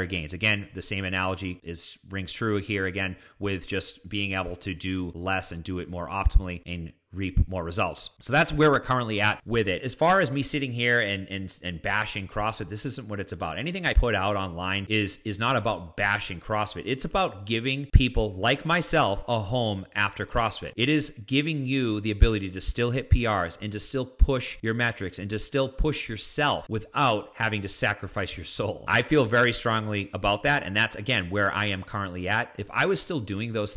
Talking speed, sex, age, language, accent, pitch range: 210 wpm, male, 30-49, English, American, 95-120 Hz